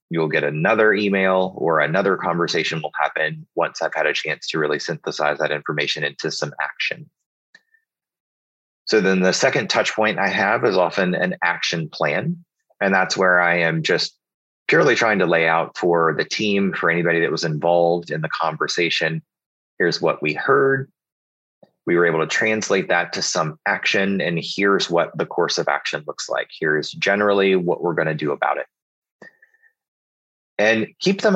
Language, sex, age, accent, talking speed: English, male, 30-49, American, 175 wpm